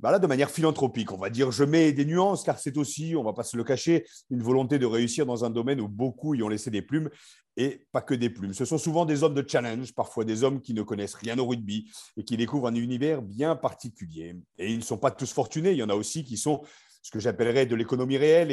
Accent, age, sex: French, 40-59, male